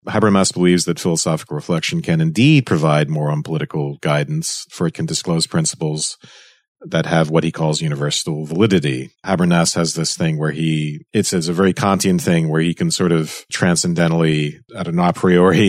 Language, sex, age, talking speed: English, male, 40-59, 175 wpm